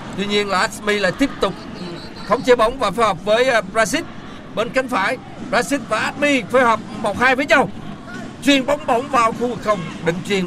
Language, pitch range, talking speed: Vietnamese, 175-245 Hz, 205 wpm